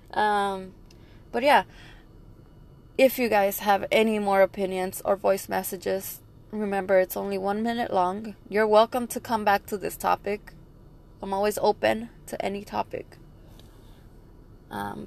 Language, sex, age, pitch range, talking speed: English, female, 20-39, 190-220 Hz, 135 wpm